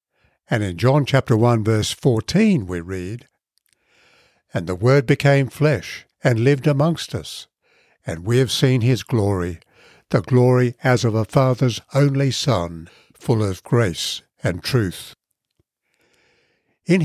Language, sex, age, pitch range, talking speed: English, male, 60-79, 110-145 Hz, 135 wpm